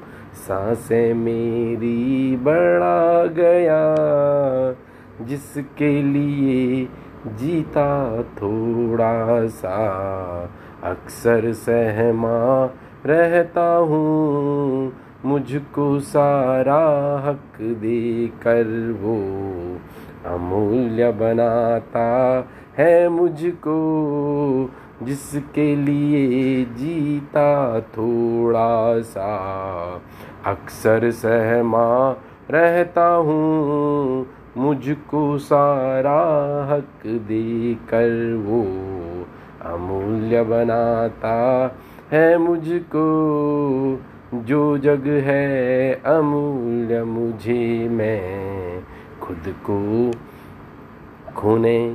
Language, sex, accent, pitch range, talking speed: Hindi, male, native, 115-145 Hz, 60 wpm